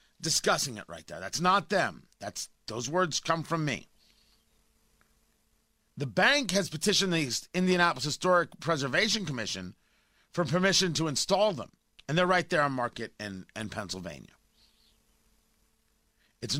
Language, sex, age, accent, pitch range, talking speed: English, male, 40-59, American, 145-190 Hz, 130 wpm